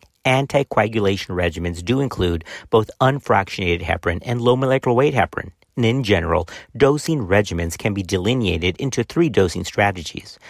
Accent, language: American, English